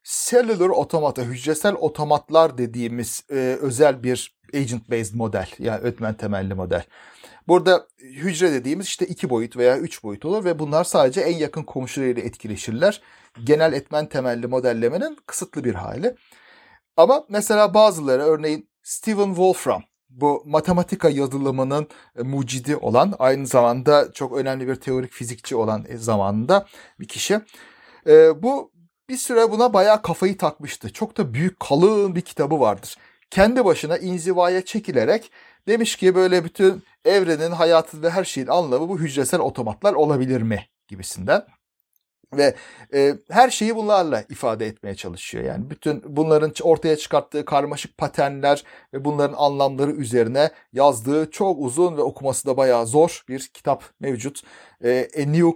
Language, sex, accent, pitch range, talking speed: Turkish, male, native, 130-180 Hz, 135 wpm